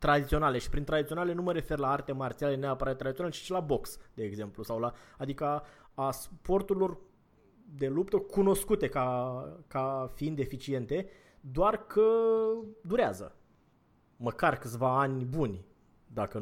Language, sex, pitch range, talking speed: Romanian, male, 130-175 Hz, 145 wpm